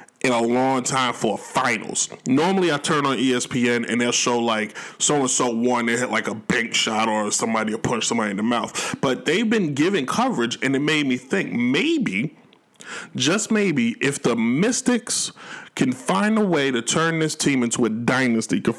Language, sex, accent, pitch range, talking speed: English, male, American, 115-160 Hz, 195 wpm